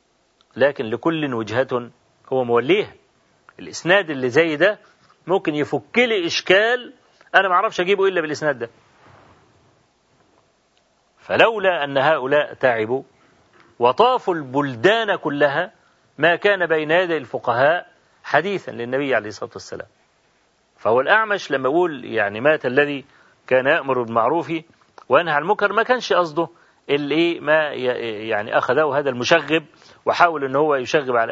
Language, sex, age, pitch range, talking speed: Arabic, male, 40-59, 130-175 Hz, 115 wpm